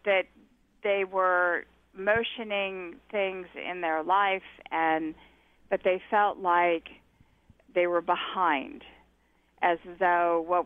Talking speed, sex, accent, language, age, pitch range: 105 wpm, female, American, English, 50-69, 170-215 Hz